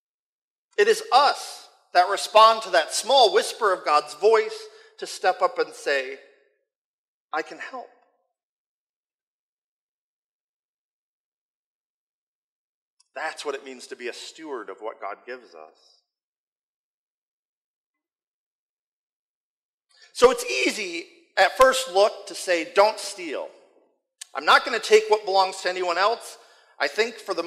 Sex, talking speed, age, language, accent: male, 125 wpm, 50-69, English, American